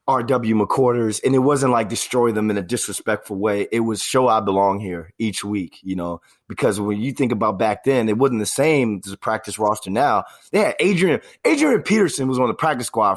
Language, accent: English, American